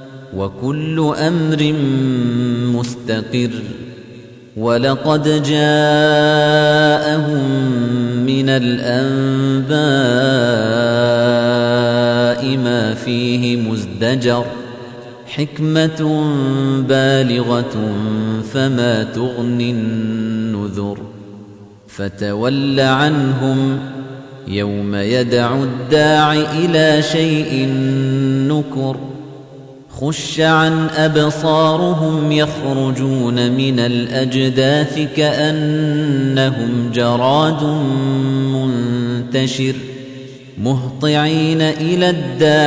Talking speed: 50 wpm